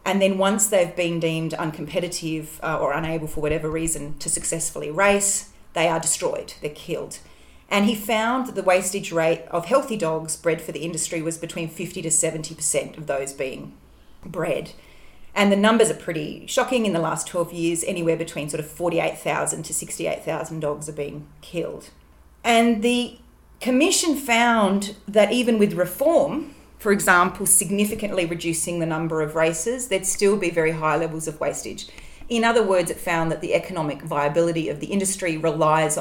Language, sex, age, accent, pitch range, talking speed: English, female, 30-49, Australian, 160-210 Hz, 170 wpm